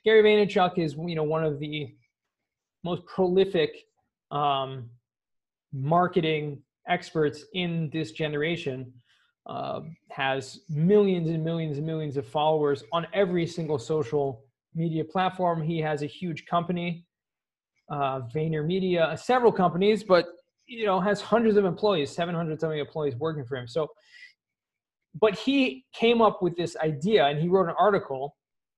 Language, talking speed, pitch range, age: English, 140 wpm, 155-205 Hz, 20-39